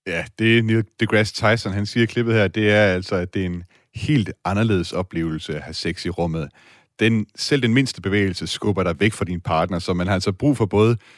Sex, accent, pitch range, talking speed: male, native, 90-115 Hz, 230 wpm